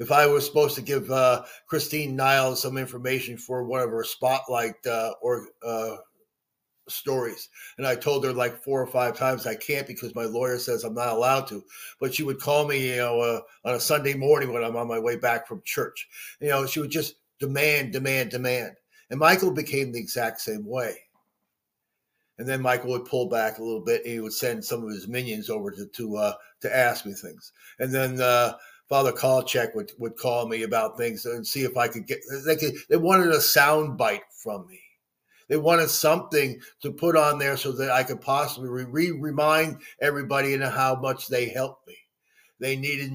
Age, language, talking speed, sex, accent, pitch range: 50-69, English, 205 wpm, male, American, 120-150 Hz